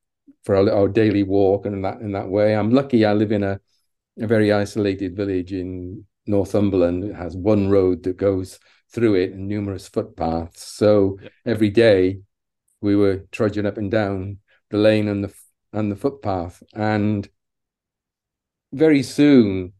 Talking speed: 160 wpm